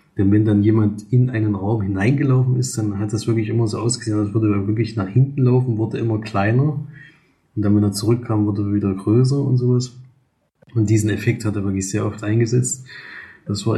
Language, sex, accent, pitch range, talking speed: German, male, German, 105-115 Hz, 210 wpm